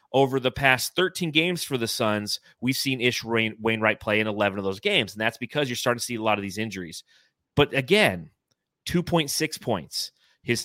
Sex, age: male, 30-49